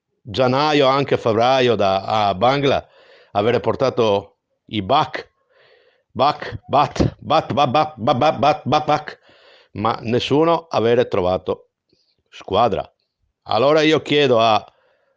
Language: Italian